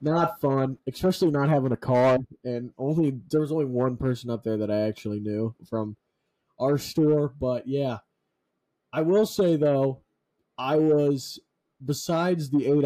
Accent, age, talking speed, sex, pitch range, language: American, 20-39, 160 wpm, male, 120-155 Hz, English